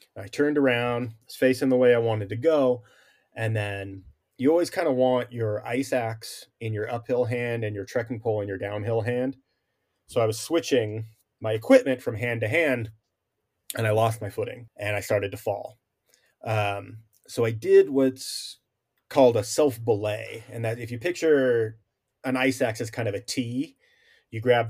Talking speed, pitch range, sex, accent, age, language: 185 wpm, 105-130 Hz, male, American, 30-49, English